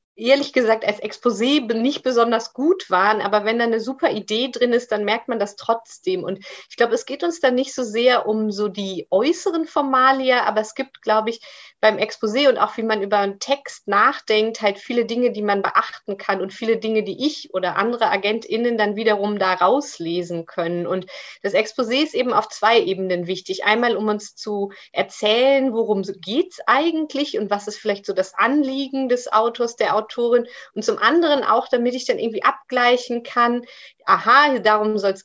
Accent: German